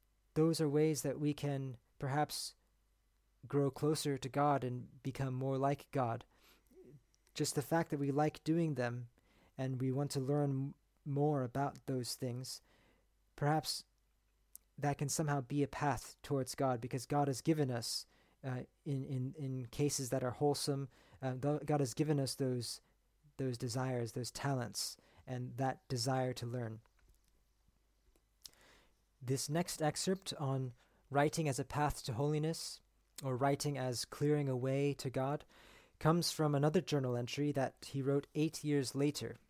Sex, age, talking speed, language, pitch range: male, 40-59, 155 wpm, English, 130-150 Hz